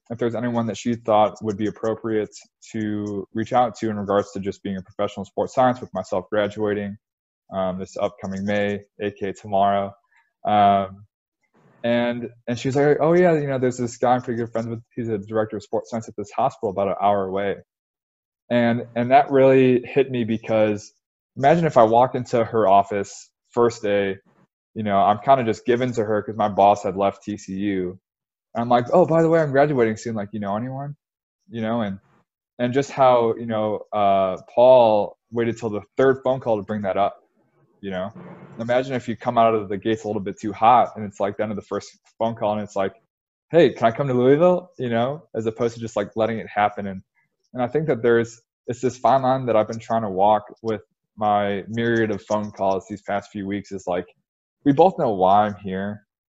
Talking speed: 215 wpm